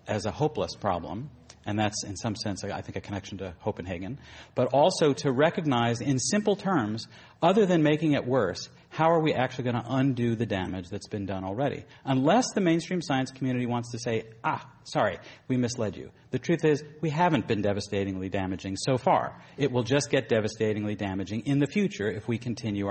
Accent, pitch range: American, 100-135 Hz